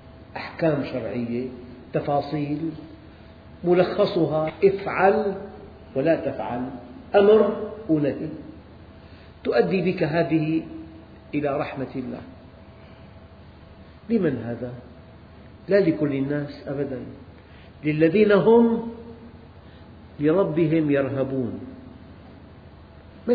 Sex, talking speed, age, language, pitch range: male, 65 wpm, 50-69, Arabic, 125-185 Hz